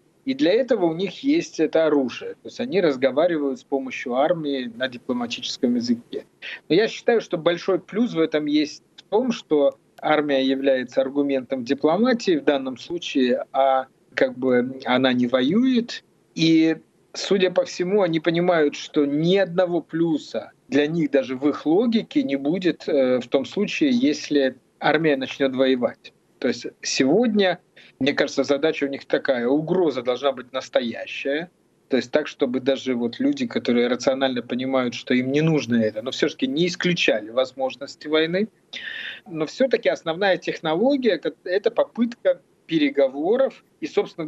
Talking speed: 150 wpm